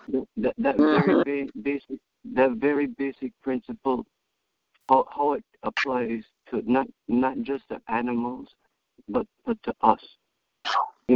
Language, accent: English, American